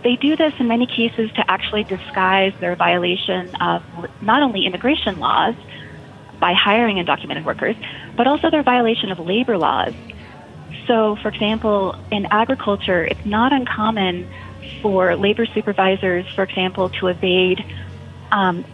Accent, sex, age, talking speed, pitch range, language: American, female, 30-49, 140 wpm, 185-230 Hz, English